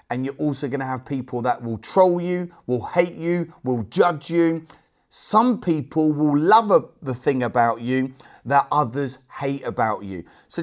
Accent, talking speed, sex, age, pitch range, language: British, 175 wpm, male, 30-49, 125-160 Hz, English